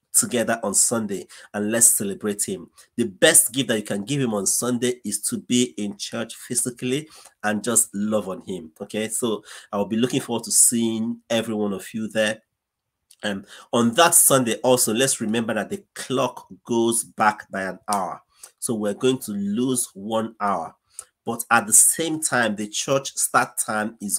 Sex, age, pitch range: male, 30-49, 105-125 Hz